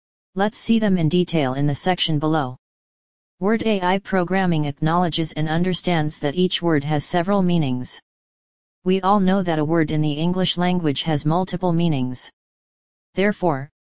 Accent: American